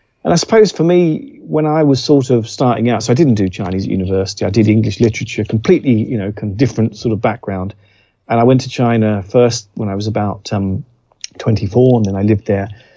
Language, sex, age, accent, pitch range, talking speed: English, male, 40-59, British, 105-125 Hz, 225 wpm